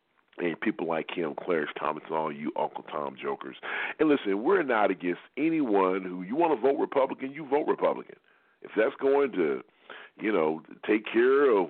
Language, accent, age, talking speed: English, American, 40-59, 185 wpm